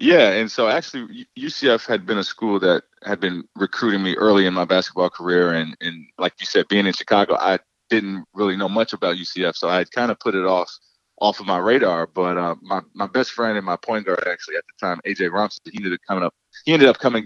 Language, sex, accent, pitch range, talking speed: English, male, American, 90-110 Hz, 245 wpm